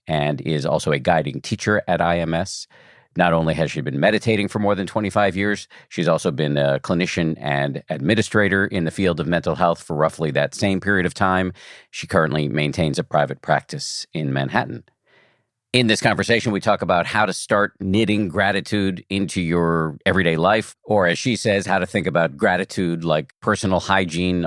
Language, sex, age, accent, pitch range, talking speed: English, male, 50-69, American, 85-115 Hz, 180 wpm